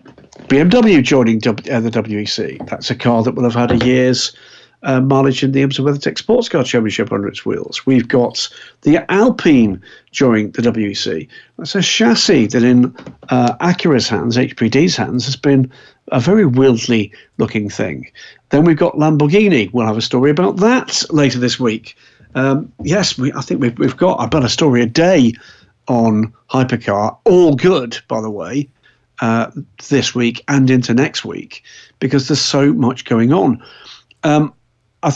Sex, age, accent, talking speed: male, 50-69, British, 170 wpm